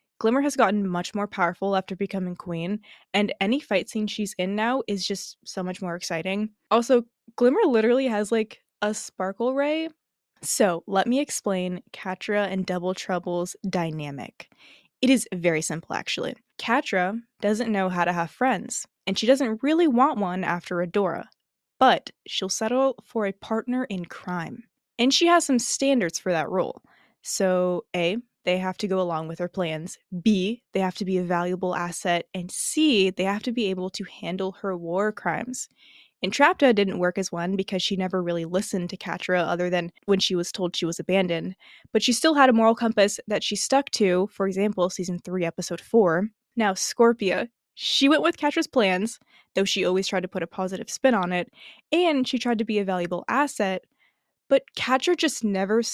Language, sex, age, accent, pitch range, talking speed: English, female, 10-29, American, 180-235 Hz, 185 wpm